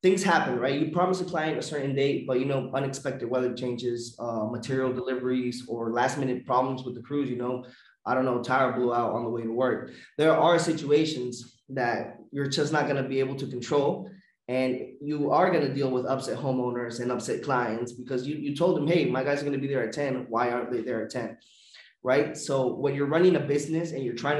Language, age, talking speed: English, 20-39, 225 wpm